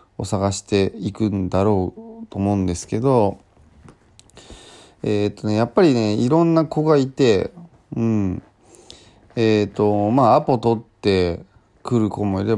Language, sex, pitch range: Japanese, male, 100-130 Hz